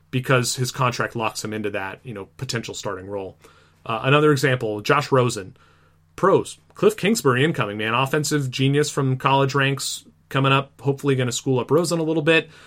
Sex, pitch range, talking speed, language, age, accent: male, 115-145 Hz, 180 wpm, English, 30-49, American